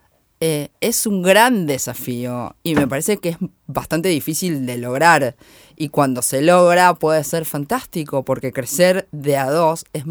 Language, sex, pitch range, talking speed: Spanish, female, 150-210 Hz, 160 wpm